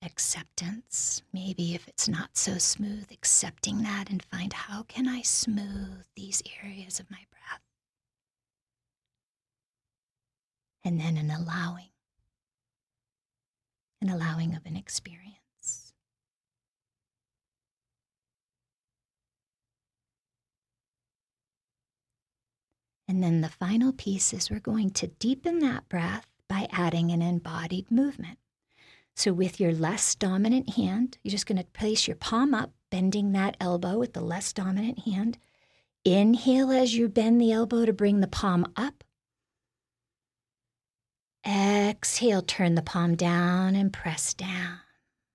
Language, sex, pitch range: English, female, 165-205 Hz